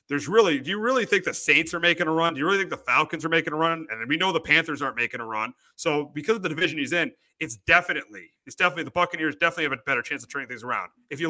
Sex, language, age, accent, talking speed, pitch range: male, English, 30-49, American, 290 wpm, 145-190 Hz